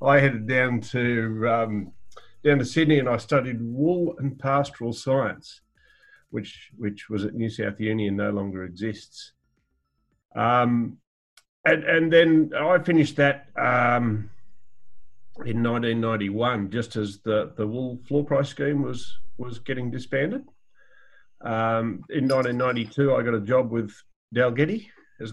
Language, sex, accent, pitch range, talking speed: English, male, Australian, 110-145 Hz, 135 wpm